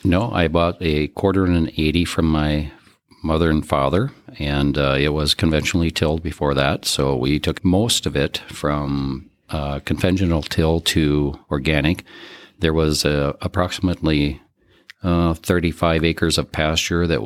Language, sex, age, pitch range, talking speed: English, male, 40-59, 70-85 Hz, 150 wpm